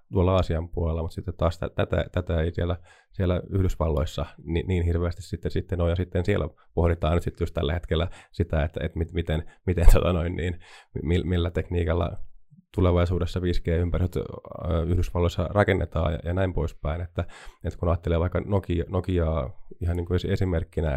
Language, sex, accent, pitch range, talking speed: Finnish, male, native, 85-95 Hz, 165 wpm